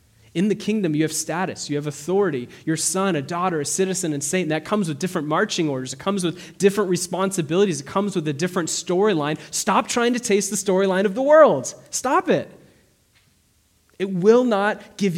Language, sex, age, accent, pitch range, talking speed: English, male, 20-39, American, 150-210 Hz, 195 wpm